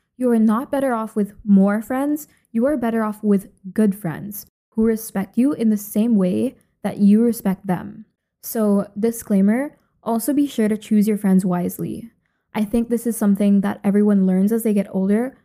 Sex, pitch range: female, 195-230 Hz